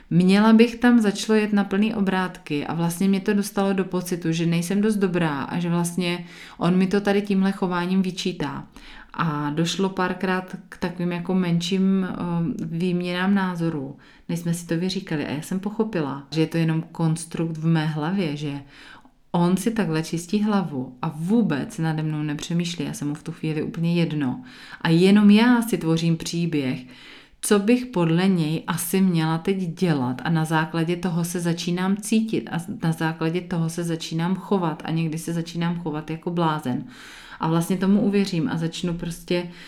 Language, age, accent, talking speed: Czech, 30-49, native, 175 wpm